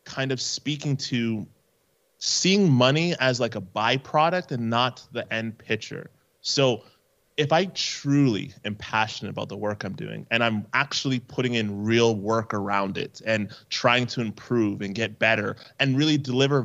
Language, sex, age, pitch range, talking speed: English, male, 20-39, 110-135 Hz, 160 wpm